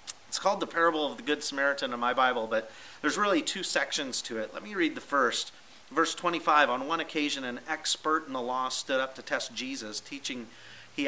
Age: 40-59